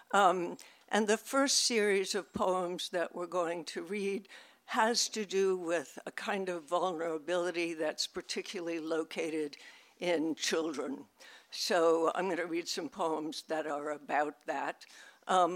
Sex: female